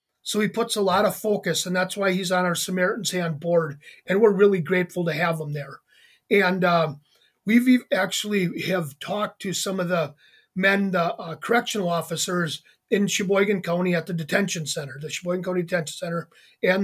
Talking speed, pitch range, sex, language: 185 wpm, 170-210 Hz, male, English